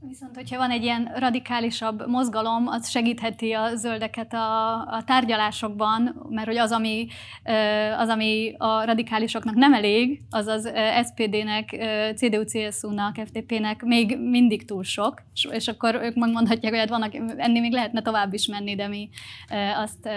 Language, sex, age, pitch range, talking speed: Hungarian, female, 20-39, 210-235 Hz, 145 wpm